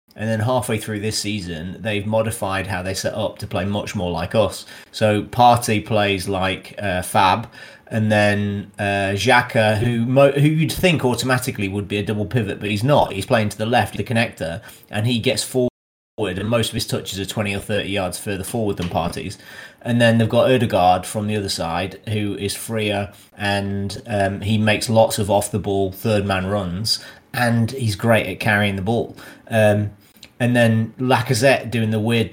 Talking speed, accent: 190 wpm, British